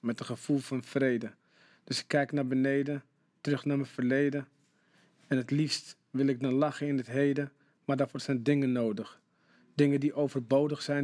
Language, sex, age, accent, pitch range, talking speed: Dutch, male, 40-59, Dutch, 135-150 Hz, 180 wpm